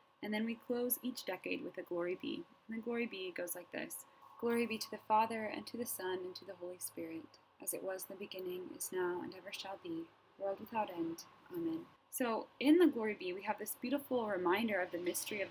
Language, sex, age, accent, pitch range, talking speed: English, female, 20-39, American, 180-250 Hz, 235 wpm